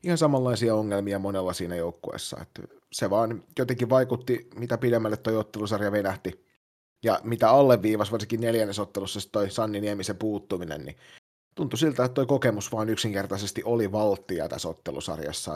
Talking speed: 145 wpm